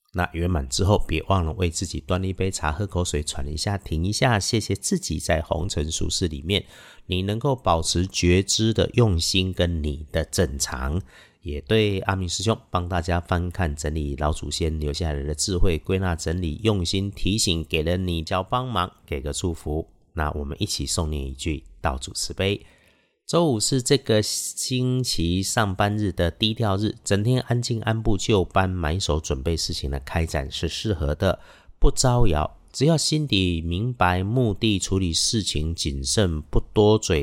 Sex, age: male, 50-69